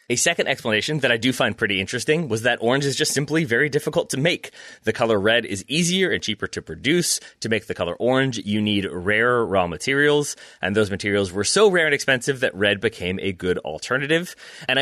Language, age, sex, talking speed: English, 30-49, male, 215 wpm